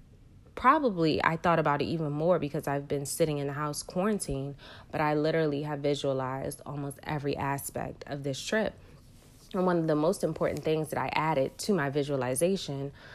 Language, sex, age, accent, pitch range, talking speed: English, female, 30-49, American, 140-185 Hz, 180 wpm